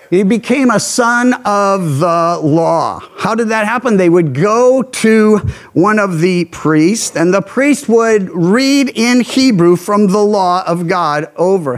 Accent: American